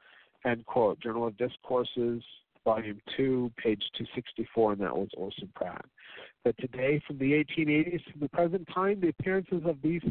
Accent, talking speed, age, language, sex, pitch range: American, 160 wpm, 50-69, English, male, 125-165 Hz